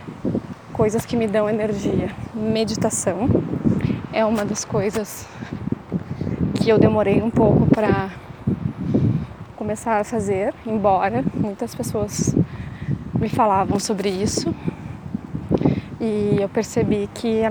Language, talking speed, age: Portuguese, 105 wpm, 20-39